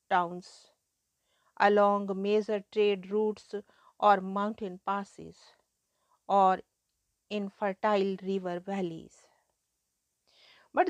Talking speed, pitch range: 75 wpm, 200-230 Hz